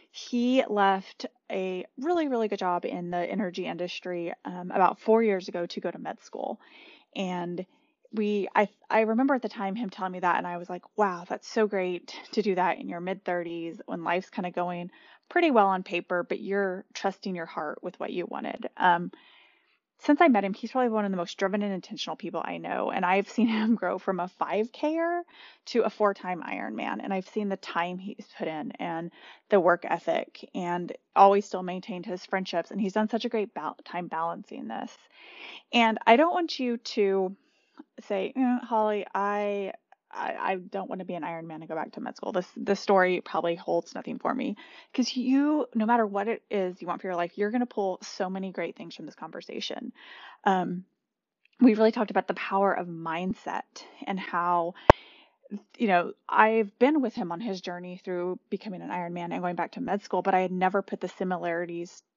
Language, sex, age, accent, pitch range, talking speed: English, female, 20-39, American, 180-225 Hz, 210 wpm